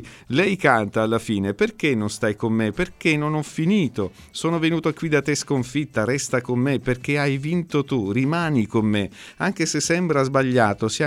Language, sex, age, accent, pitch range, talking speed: Italian, male, 50-69, native, 105-130 Hz, 185 wpm